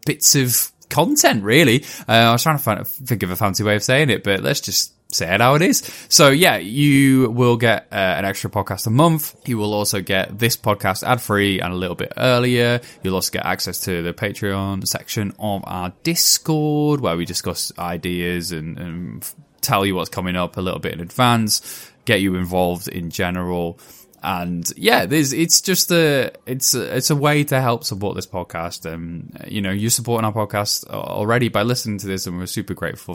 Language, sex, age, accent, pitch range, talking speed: English, male, 10-29, British, 90-125 Hz, 205 wpm